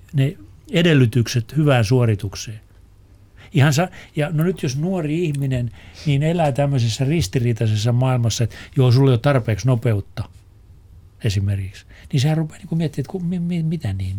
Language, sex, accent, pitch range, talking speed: Finnish, male, native, 105-140 Hz, 140 wpm